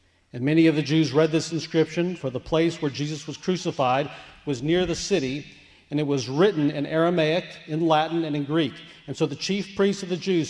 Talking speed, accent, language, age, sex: 215 wpm, American, English, 50-69, male